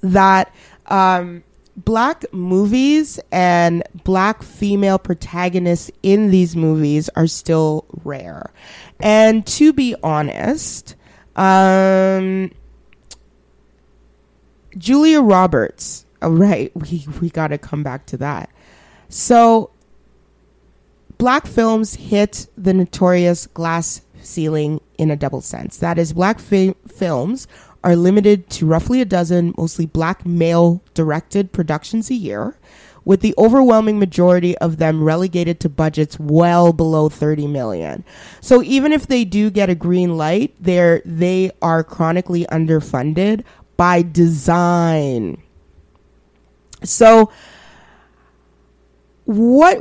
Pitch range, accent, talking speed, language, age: 155-200 Hz, American, 105 wpm, English, 30-49